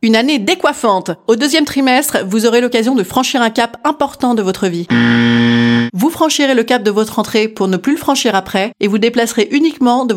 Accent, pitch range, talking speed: French, 200-265 Hz, 205 wpm